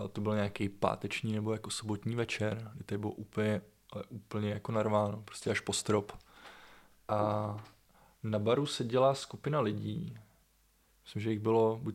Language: Czech